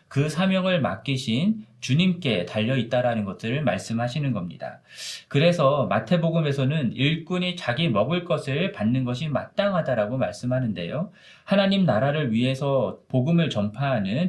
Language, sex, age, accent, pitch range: Korean, male, 40-59, native, 120-180 Hz